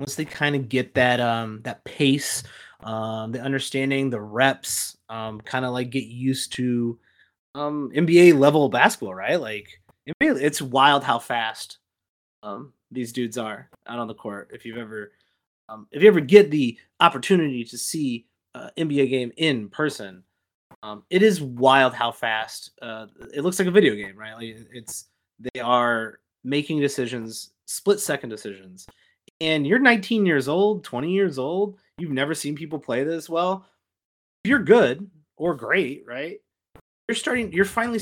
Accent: American